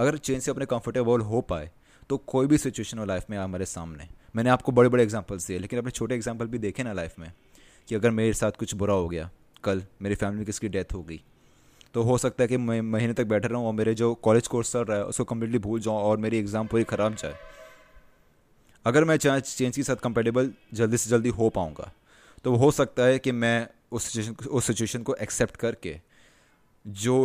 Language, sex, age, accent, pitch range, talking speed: Hindi, male, 20-39, native, 105-130 Hz, 215 wpm